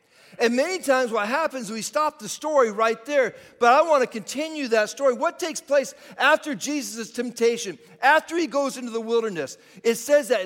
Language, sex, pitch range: English, male, 150-230 Hz